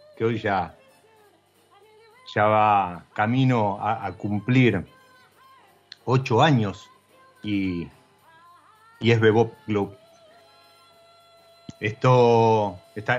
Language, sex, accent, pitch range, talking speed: Spanish, male, Argentinian, 110-155 Hz, 75 wpm